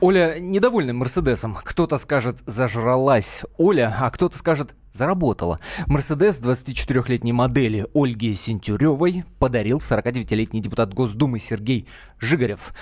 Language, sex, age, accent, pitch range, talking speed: Russian, male, 20-39, native, 110-155 Hz, 105 wpm